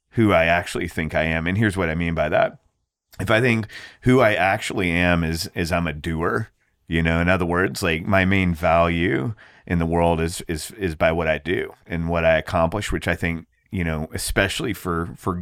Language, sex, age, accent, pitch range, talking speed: English, male, 30-49, American, 80-95 Hz, 220 wpm